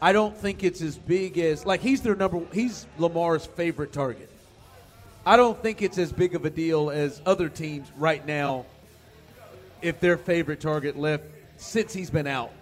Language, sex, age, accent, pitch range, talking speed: English, male, 40-59, American, 140-170 Hz, 180 wpm